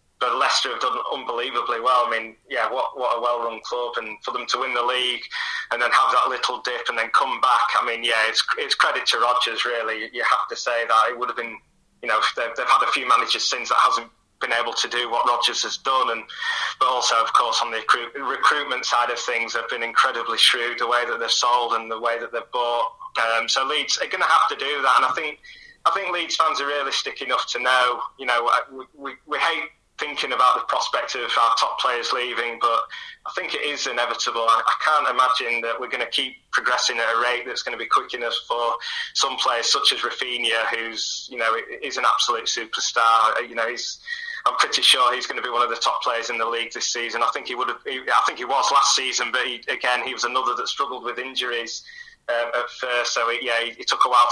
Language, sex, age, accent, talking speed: English, male, 20-39, British, 245 wpm